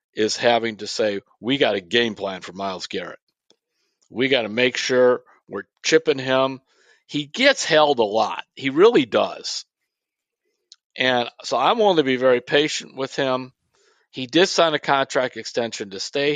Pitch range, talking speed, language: 115-145 Hz, 170 wpm, English